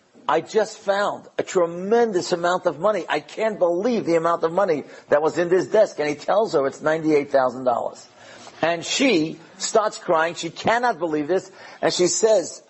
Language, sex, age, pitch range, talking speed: English, male, 50-69, 145-190 Hz, 175 wpm